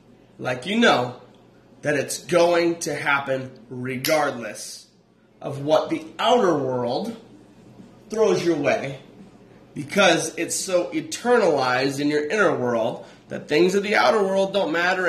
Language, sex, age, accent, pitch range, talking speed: English, male, 30-49, American, 140-200 Hz, 130 wpm